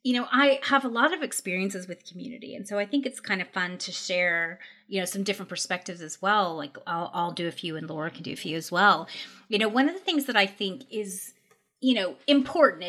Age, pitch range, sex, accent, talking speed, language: 30-49, 190-250 Hz, female, American, 250 wpm, English